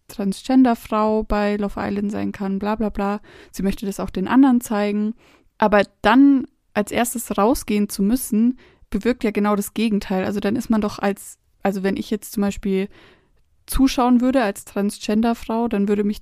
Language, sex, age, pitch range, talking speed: German, female, 20-39, 190-220 Hz, 175 wpm